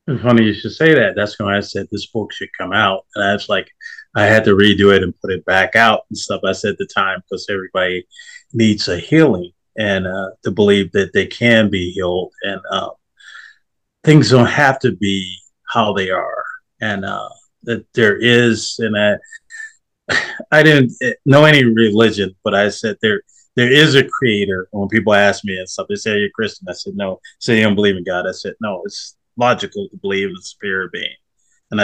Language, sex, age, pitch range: English, male, 30-49, 105-135 Hz